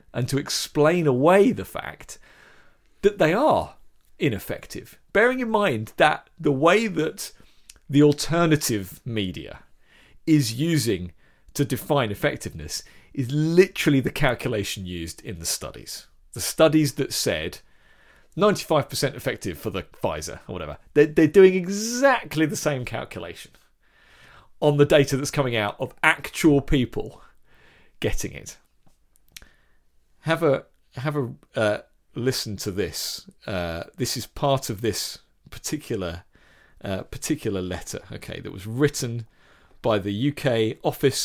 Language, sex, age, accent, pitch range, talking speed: English, male, 40-59, British, 110-155 Hz, 130 wpm